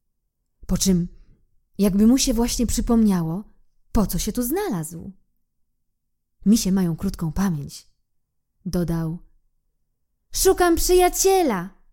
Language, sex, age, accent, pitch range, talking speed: Polish, female, 20-39, native, 165-280 Hz, 95 wpm